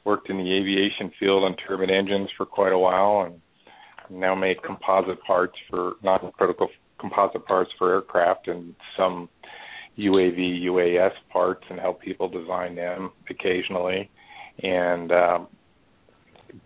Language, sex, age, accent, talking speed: English, male, 50-69, American, 130 wpm